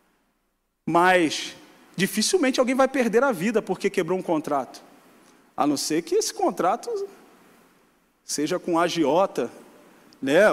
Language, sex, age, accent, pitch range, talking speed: Portuguese, male, 40-59, Brazilian, 270-370 Hz, 120 wpm